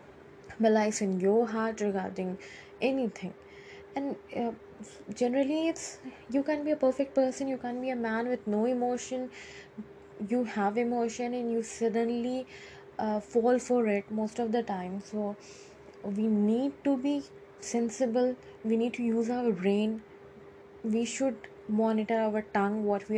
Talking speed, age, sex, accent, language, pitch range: 150 wpm, 10-29, female, Indian, English, 210-255 Hz